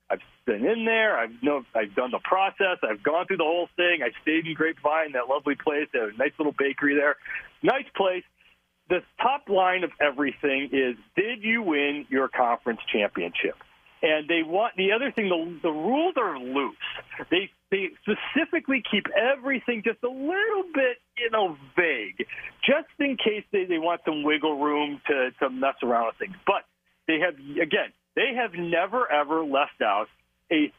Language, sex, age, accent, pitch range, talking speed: English, male, 40-59, American, 145-215 Hz, 180 wpm